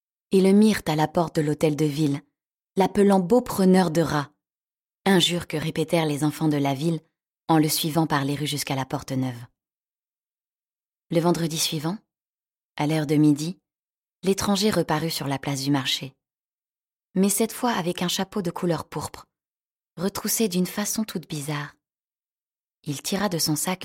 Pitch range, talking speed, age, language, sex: 150-185 Hz, 170 wpm, 20-39, French, female